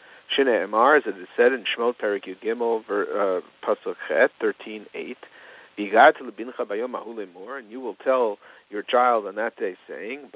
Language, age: English, 50-69